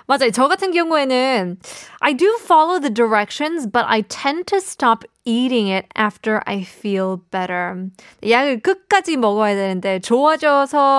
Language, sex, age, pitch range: Korean, female, 20-39, 205-290 Hz